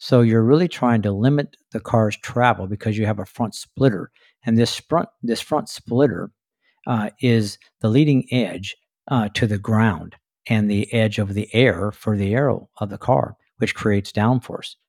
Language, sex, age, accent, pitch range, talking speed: English, male, 60-79, American, 105-125 Hz, 180 wpm